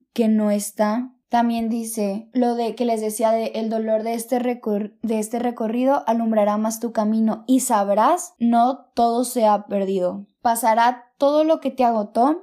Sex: female